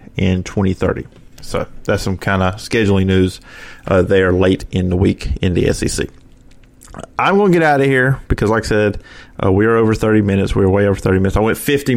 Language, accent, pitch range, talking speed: English, American, 95-115 Hz, 215 wpm